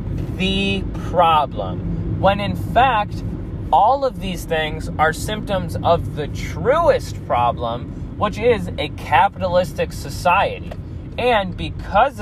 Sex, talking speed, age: male, 110 wpm, 20-39